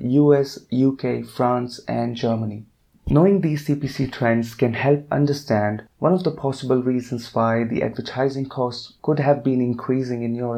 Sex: male